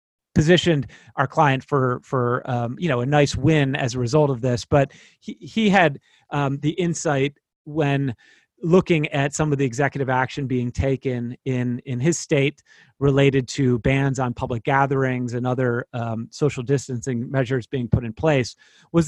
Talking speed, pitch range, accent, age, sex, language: 170 wpm, 125-150 Hz, American, 30-49, male, English